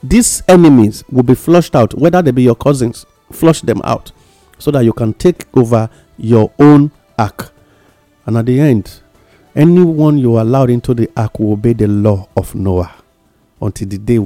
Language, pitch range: English, 115-170 Hz